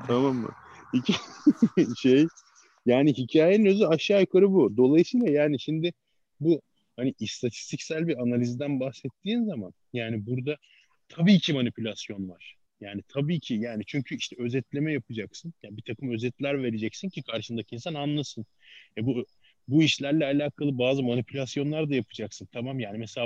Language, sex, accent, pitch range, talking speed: Turkish, male, native, 120-150 Hz, 140 wpm